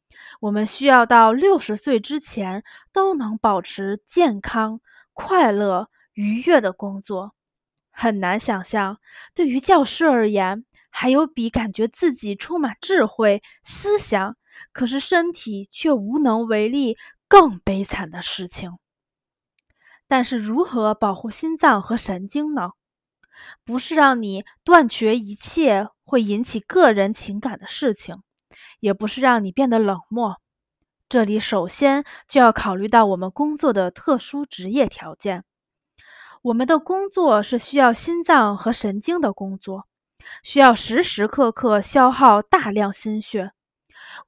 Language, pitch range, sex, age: Chinese, 205-285 Hz, female, 20-39